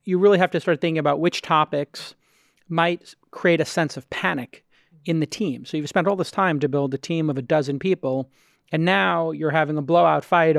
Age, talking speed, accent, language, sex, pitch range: 30-49, 220 wpm, American, English, male, 140-175 Hz